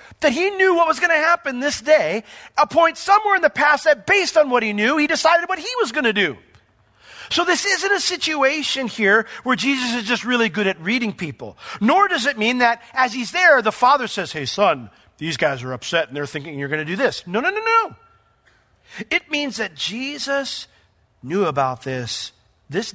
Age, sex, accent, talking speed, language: 40-59, male, American, 215 wpm, English